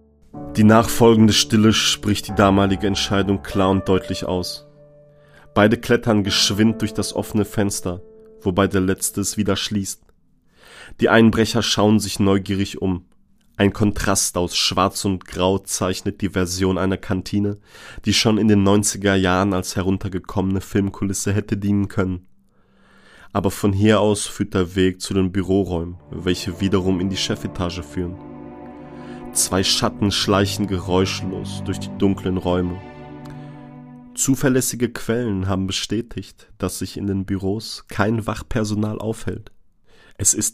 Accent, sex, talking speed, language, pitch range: German, male, 135 wpm, German, 95-105 Hz